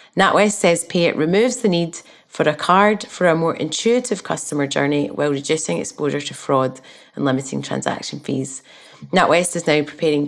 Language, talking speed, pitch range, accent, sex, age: English, 170 wpm, 140-170 Hz, British, female, 30-49